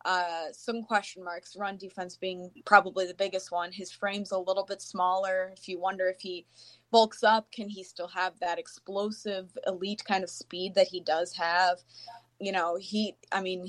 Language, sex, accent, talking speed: English, female, American, 190 wpm